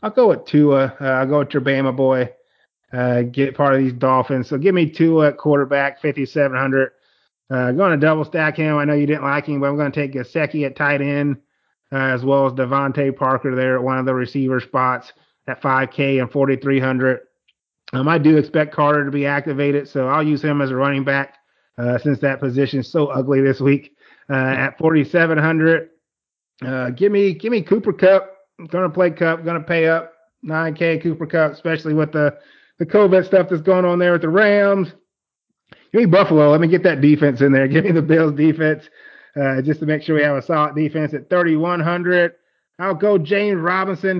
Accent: American